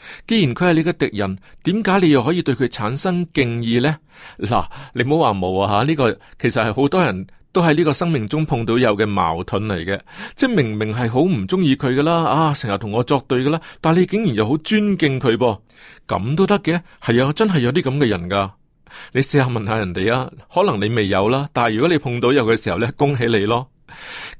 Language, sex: Chinese, male